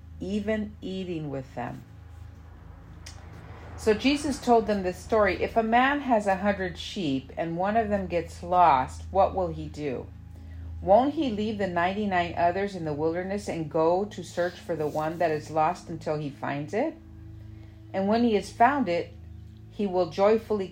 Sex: female